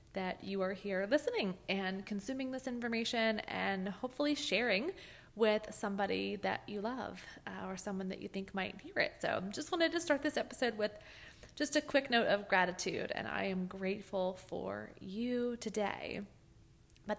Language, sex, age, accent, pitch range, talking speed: English, female, 20-39, American, 185-230 Hz, 170 wpm